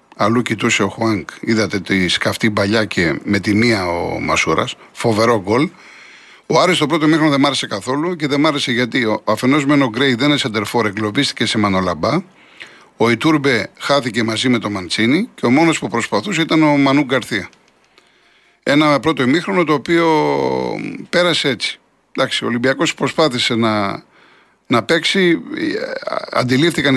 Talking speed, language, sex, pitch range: 155 wpm, Greek, male, 115-155 Hz